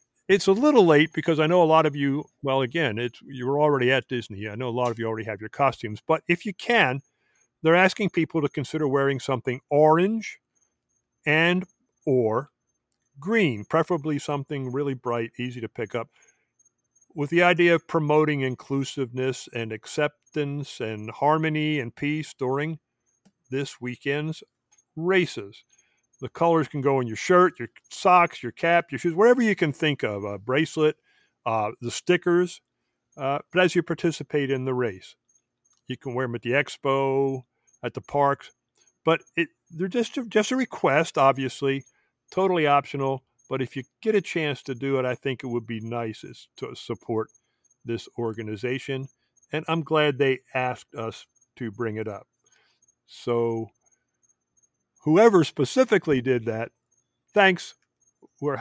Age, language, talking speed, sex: 50-69, English, 155 wpm, male